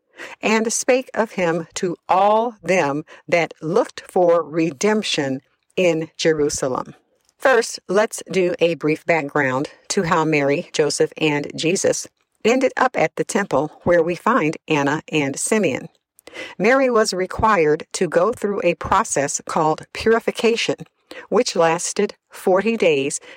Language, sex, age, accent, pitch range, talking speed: English, female, 60-79, American, 160-235 Hz, 130 wpm